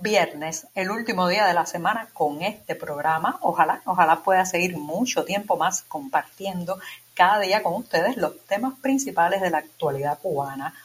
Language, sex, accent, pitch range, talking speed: Spanish, female, American, 160-205 Hz, 160 wpm